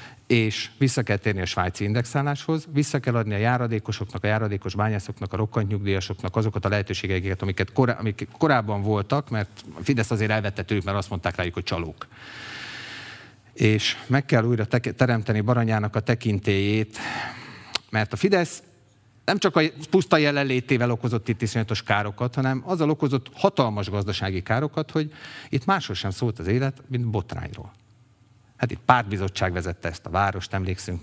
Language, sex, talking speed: Hungarian, male, 155 wpm